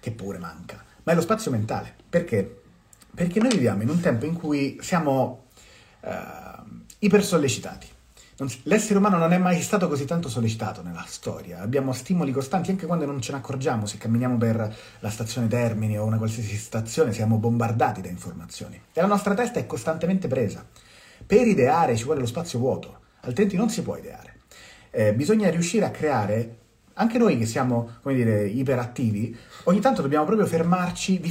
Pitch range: 115-180 Hz